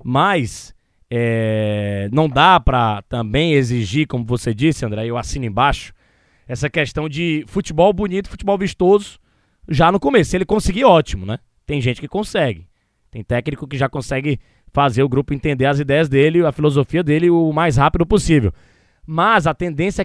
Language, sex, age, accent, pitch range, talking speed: Portuguese, male, 20-39, Brazilian, 130-180 Hz, 165 wpm